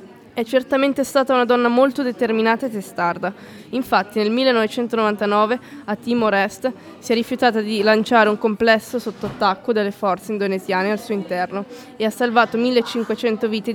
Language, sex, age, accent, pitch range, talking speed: Italian, female, 20-39, native, 205-240 Hz, 150 wpm